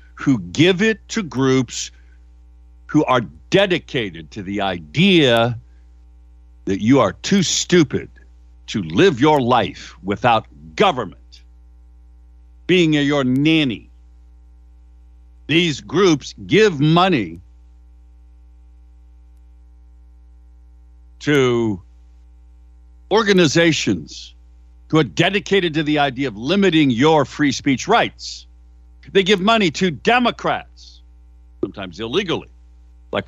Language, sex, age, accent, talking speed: English, male, 60-79, American, 90 wpm